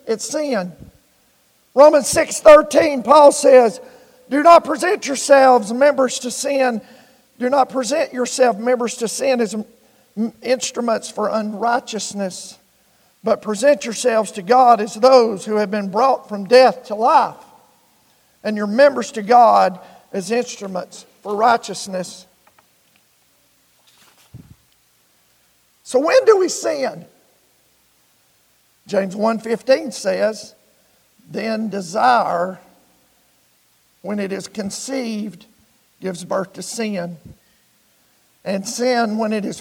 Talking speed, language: 110 wpm, English